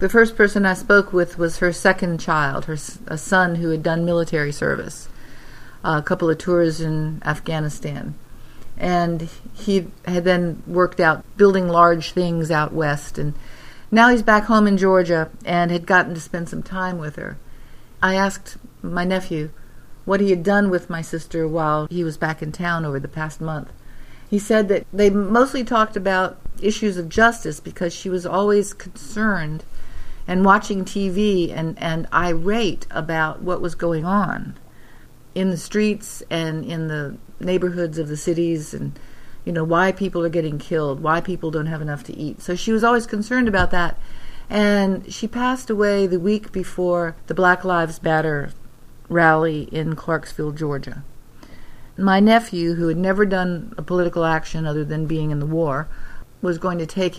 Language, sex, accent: English, female, American